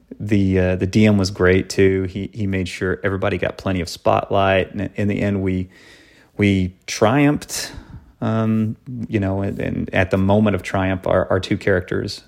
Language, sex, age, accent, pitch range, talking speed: English, male, 30-49, American, 90-105 Hz, 180 wpm